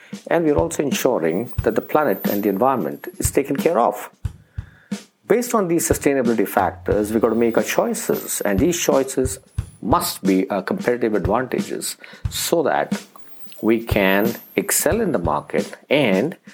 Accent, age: Indian, 50-69